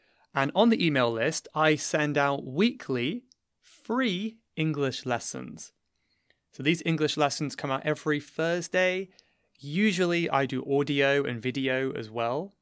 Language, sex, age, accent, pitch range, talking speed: English, male, 30-49, British, 130-170 Hz, 135 wpm